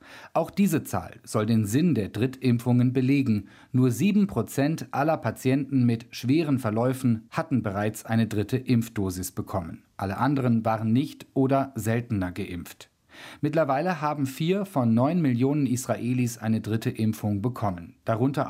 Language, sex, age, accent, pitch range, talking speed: German, male, 40-59, German, 110-140 Hz, 135 wpm